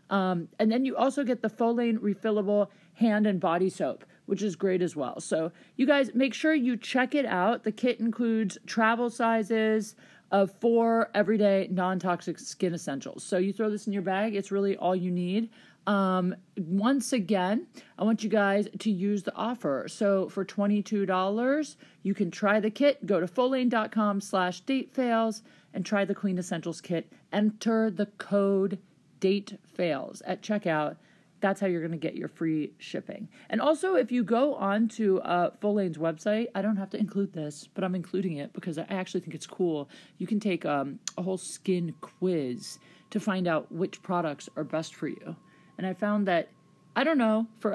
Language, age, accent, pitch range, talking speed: English, 40-59, American, 185-220 Hz, 185 wpm